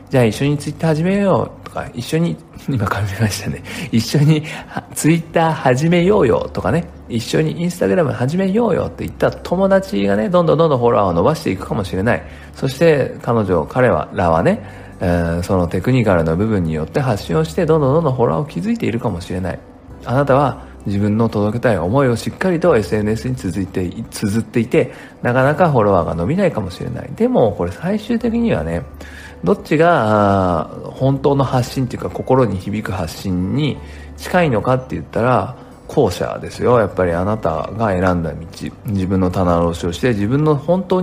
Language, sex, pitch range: Japanese, male, 95-150 Hz